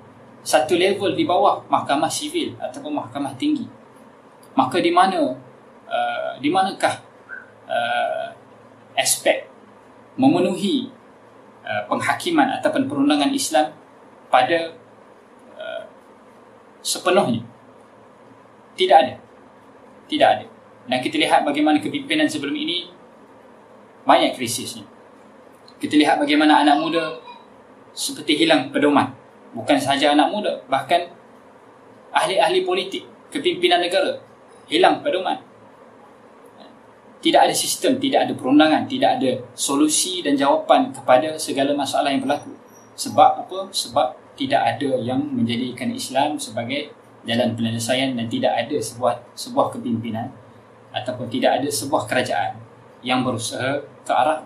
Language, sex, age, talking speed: English, male, 20-39, 110 wpm